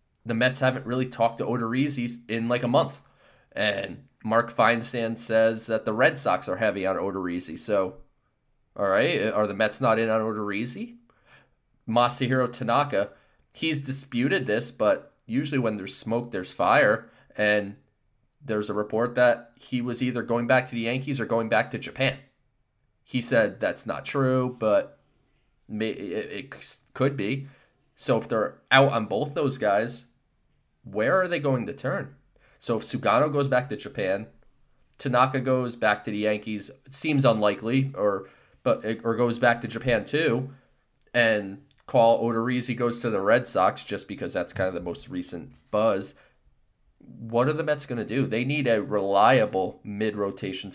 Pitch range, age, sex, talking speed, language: 110-135 Hz, 20-39, male, 165 wpm, English